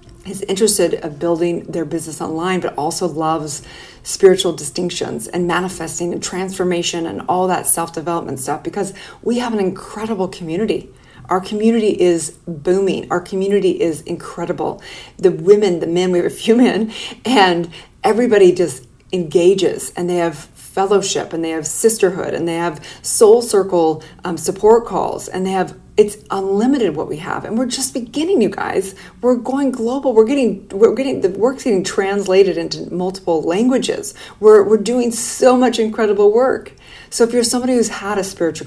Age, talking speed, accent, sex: 40-59, 165 wpm, American, female